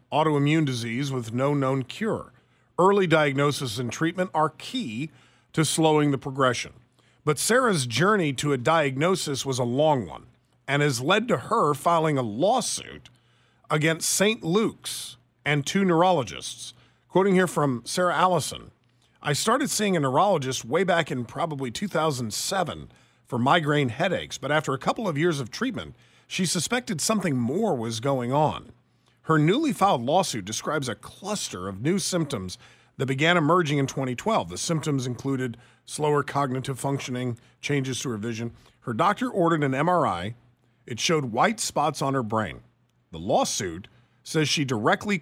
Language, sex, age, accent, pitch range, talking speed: English, male, 40-59, American, 125-170 Hz, 155 wpm